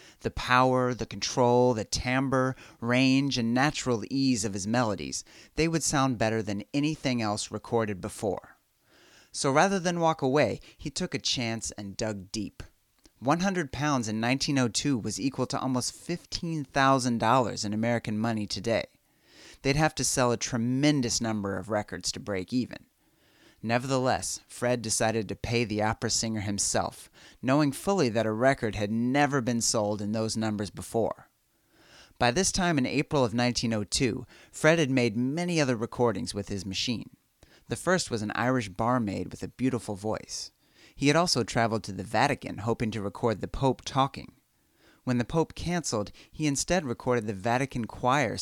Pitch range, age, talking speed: 110-135 Hz, 30-49, 160 wpm